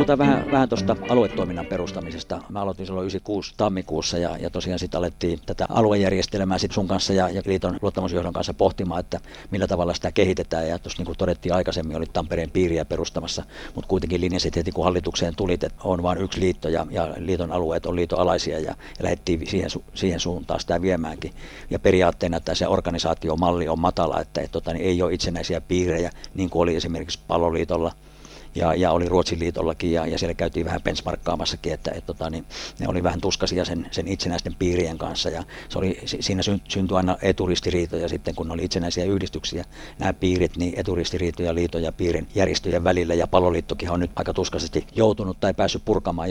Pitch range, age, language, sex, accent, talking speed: 85-95 Hz, 50-69, Finnish, male, native, 185 wpm